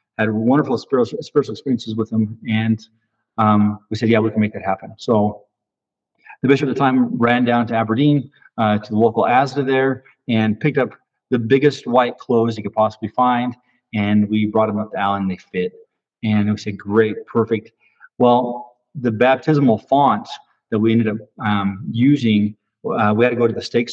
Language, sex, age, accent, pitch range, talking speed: English, male, 40-59, American, 110-145 Hz, 190 wpm